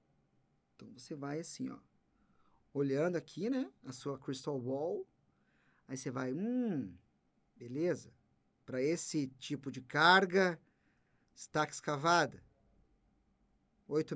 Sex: male